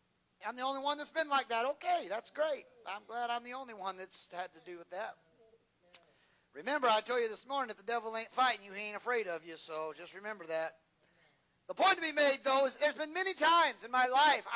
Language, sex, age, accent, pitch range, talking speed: English, male, 40-59, American, 225-310 Hz, 240 wpm